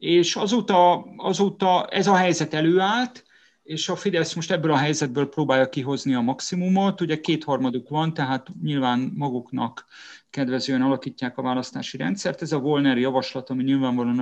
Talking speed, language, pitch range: 150 wpm, Hungarian, 130-160 Hz